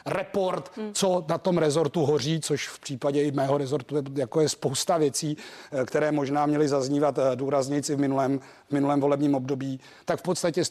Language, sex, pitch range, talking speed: Czech, male, 145-180 Hz, 170 wpm